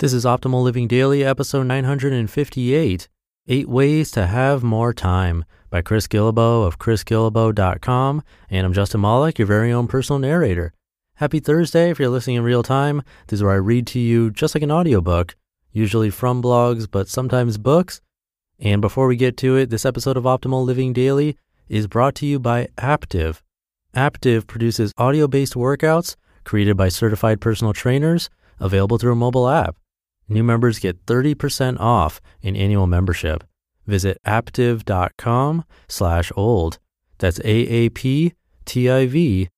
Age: 30-49